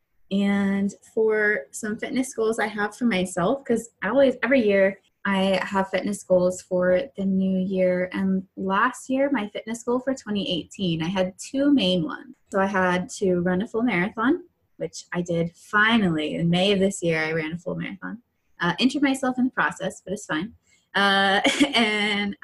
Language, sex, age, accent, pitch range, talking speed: English, female, 20-39, American, 180-230 Hz, 180 wpm